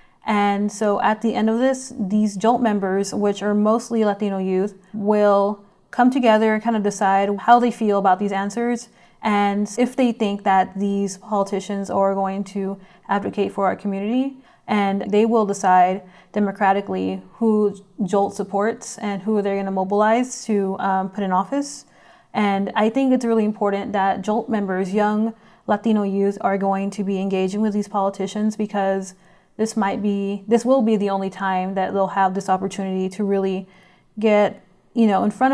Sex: female